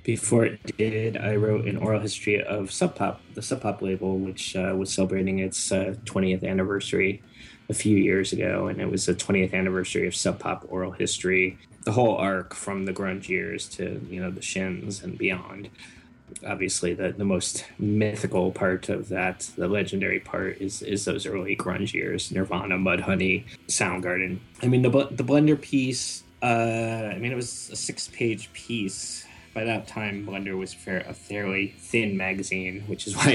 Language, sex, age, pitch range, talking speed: English, male, 20-39, 95-115 Hz, 175 wpm